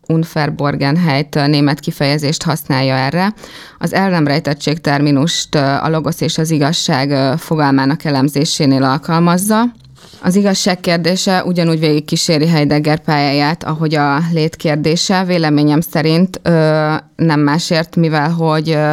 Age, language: 20-39, Hungarian